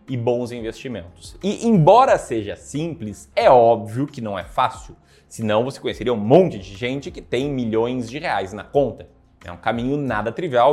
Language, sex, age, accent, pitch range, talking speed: Portuguese, male, 20-39, Brazilian, 120-175 Hz, 180 wpm